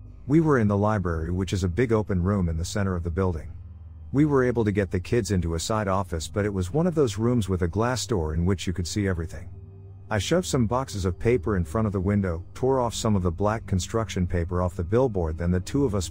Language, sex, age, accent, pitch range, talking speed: English, male, 50-69, American, 85-110 Hz, 270 wpm